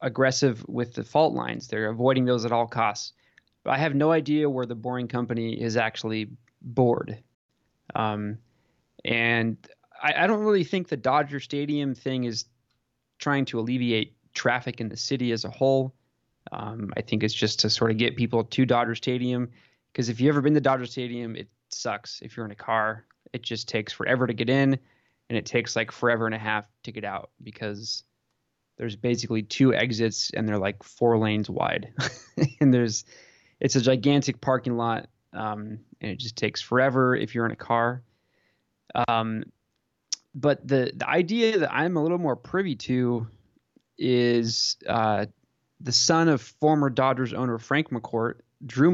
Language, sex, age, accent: English, male, 20-39, American